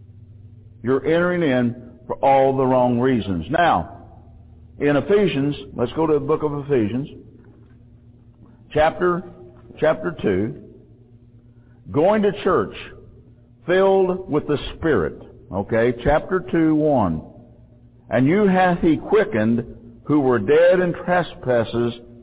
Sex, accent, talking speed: male, American, 115 wpm